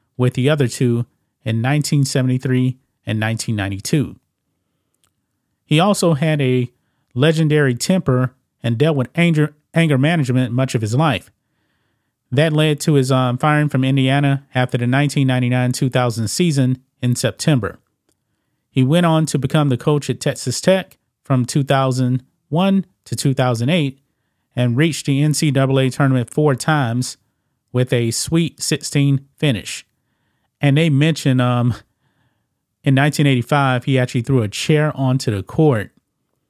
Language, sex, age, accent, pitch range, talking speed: English, male, 30-49, American, 120-145 Hz, 130 wpm